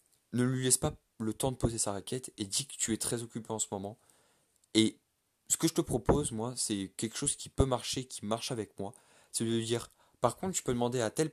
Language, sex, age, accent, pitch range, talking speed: French, male, 20-39, French, 110-130 Hz, 250 wpm